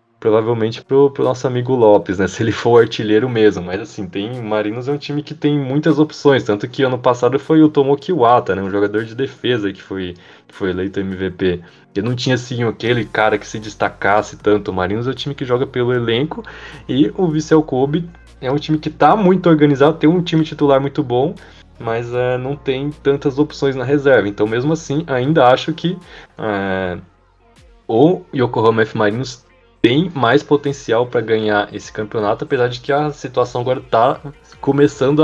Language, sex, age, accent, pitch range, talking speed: Portuguese, male, 20-39, Brazilian, 105-140 Hz, 190 wpm